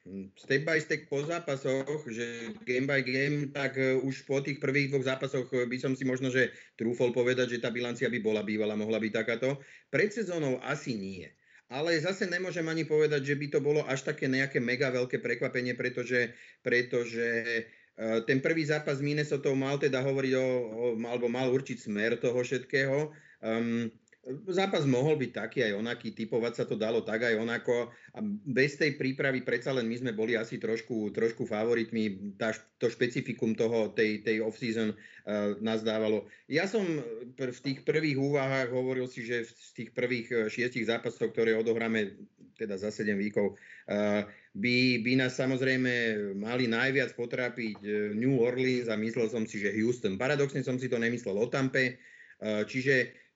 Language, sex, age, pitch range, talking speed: Slovak, male, 40-59, 115-135 Hz, 170 wpm